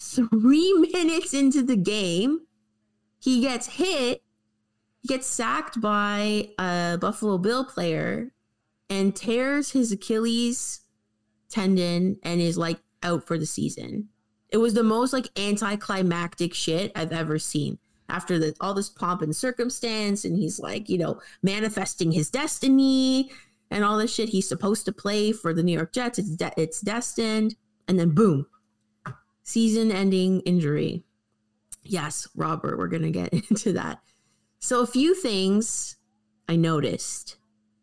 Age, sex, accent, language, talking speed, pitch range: 20-39, female, American, English, 135 wpm, 155-225 Hz